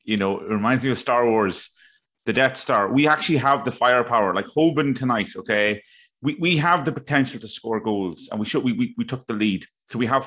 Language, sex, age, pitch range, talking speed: English, male, 30-49, 105-135 Hz, 235 wpm